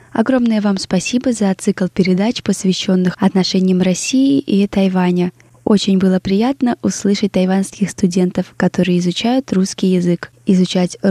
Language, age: Russian, 20-39